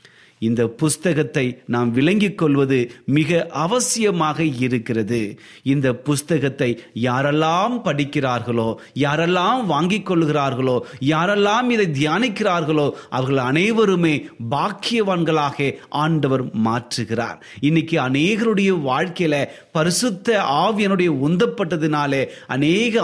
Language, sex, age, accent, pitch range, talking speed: Tamil, male, 30-49, native, 125-185 Hz, 80 wpm